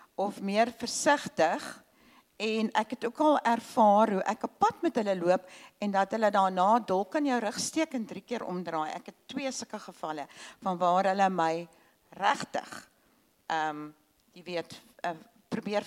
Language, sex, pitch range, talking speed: English, female, 195-260 Hz, 160 wpm